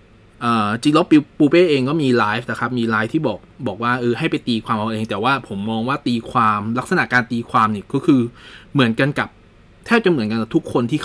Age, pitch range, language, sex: 20-39, 110-135 Hz, Thai, male